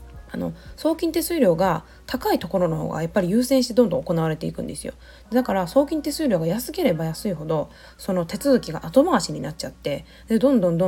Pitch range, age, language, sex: 160-240 Hz, 20-39, Japanese, female